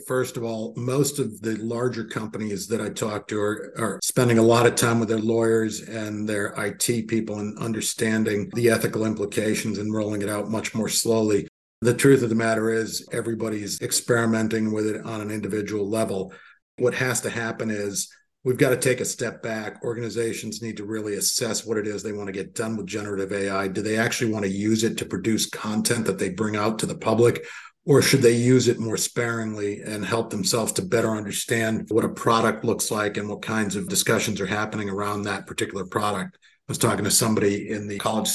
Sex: male